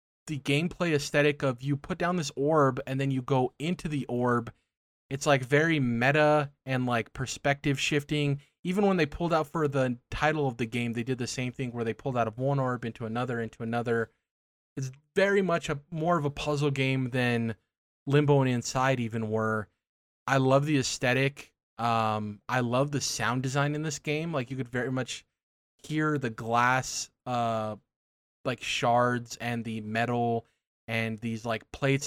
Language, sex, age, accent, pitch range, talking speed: English, male, 20-39, American, 115-140 Hz, 180 wpm